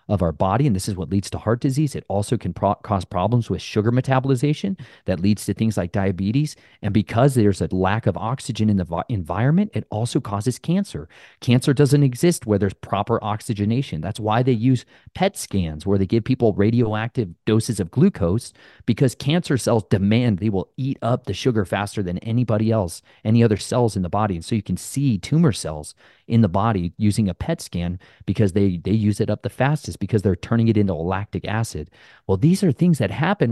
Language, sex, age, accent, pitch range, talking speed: English, male, 40-59, American, 100-130 Hz, 210 wpm